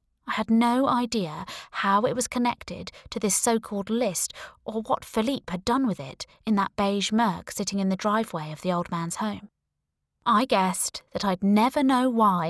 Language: English